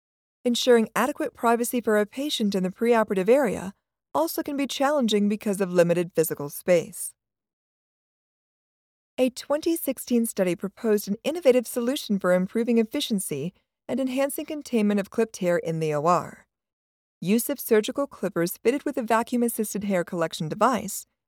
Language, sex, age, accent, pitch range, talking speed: English, female, 40-59, American, 185-250 Hz, 140 wpm